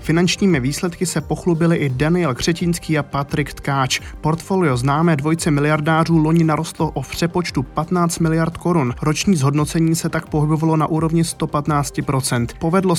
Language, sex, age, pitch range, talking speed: Czech, male, 20-39, 140-170 Hz, 140 wpm